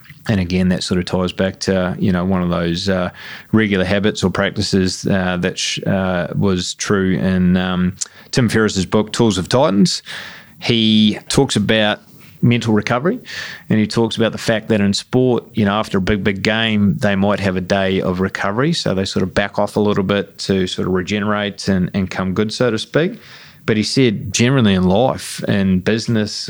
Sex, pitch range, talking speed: male, 95-105 Hz, 195 wpm